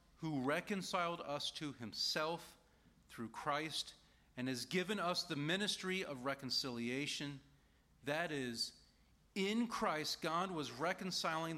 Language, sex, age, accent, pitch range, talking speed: English, male, 40-59, American, 130-170 Hz, 115 wpm